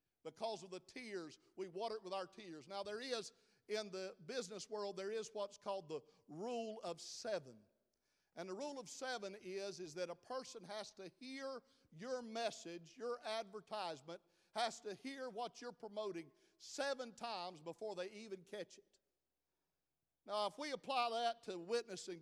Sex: male